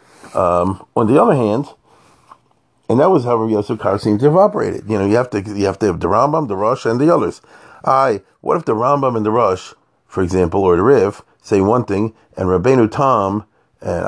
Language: English